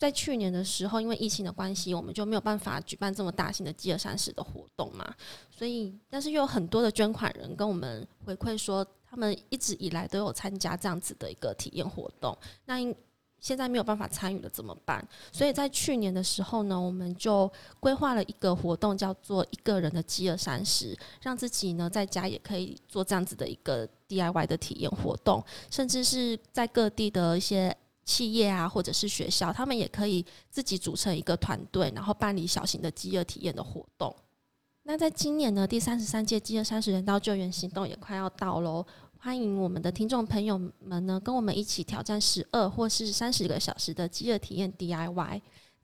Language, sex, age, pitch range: Chinese, female, 20-39, 180-220 Hz